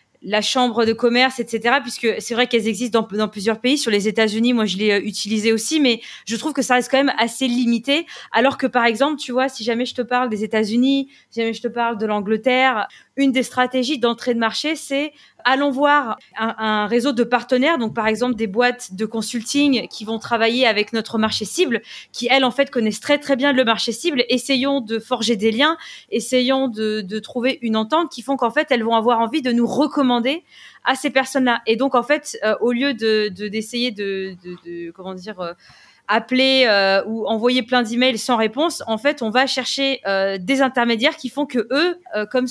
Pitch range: 215-260 Hz